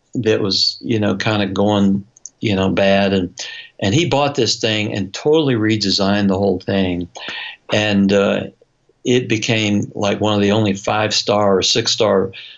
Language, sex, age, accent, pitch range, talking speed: English, male, 60-79, American, 95-115 Hz, 160 wpm